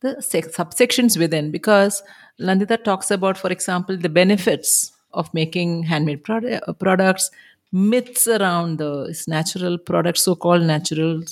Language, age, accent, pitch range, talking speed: English, 50-69, Indian, 170-215 Hz, 115 wpm